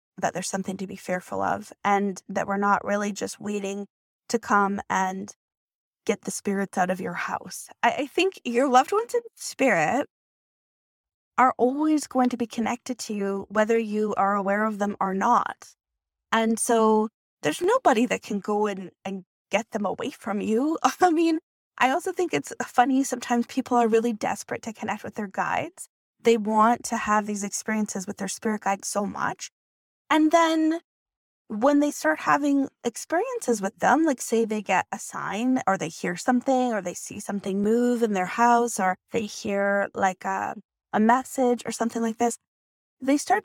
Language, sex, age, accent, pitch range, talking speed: English, female, 20-39, American, 205-280 Hz, 180 wpm